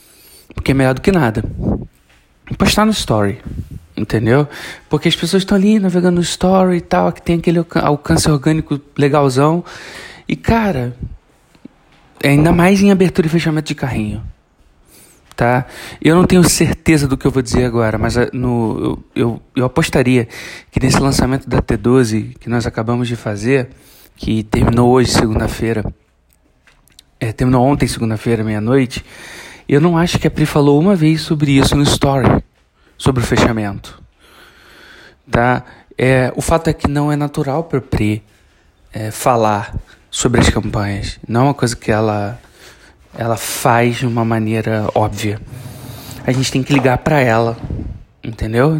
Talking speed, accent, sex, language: 150 wpm, Brazilian, male, Portuguese